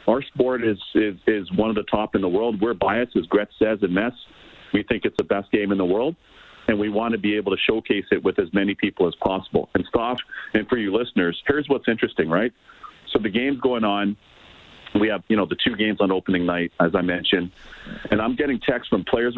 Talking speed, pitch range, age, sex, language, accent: 240 wpm, 100-115 Hz, 50-69, male, English, American